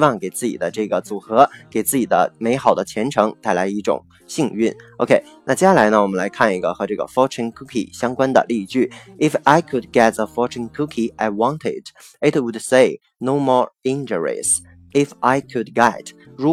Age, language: 20-39, Chinese